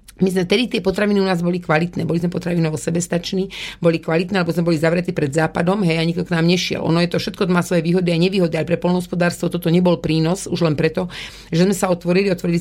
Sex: female